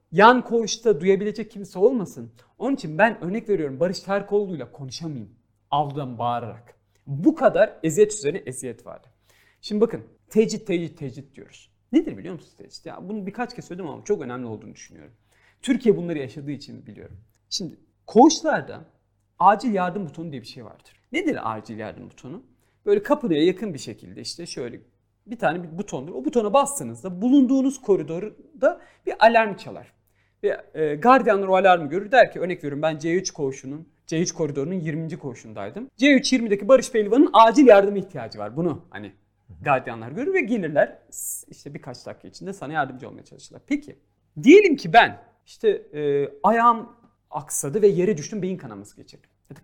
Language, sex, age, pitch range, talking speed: Turkish, male, 40-59, 140-220 Hz, 155 wpm